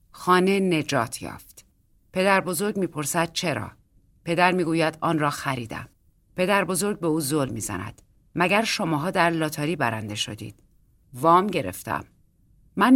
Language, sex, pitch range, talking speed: Persian, female, 130-180 Hz, 125 wpm